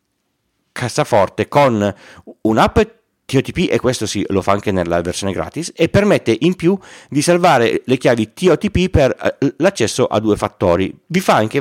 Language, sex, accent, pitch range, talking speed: Italian, male, native, 100-150 Hz, 155 wpm